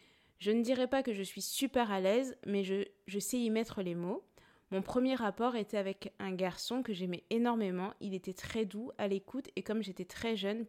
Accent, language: French, French